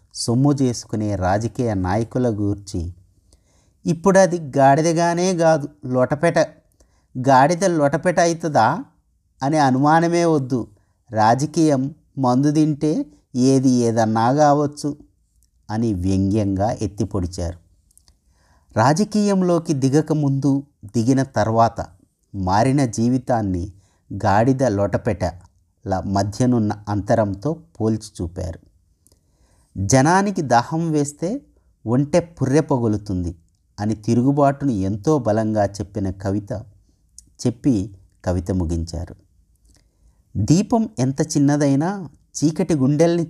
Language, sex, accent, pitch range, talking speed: Telugu, male, native, 95-145 Hz, 80 wpm